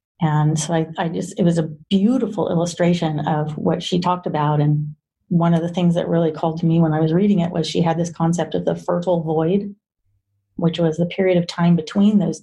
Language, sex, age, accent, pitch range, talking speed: English, female, 40-59, American, 155-180 Hz, 225 wpm